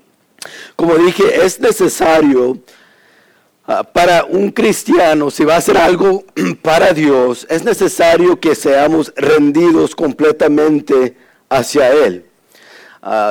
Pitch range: 135-170 Hz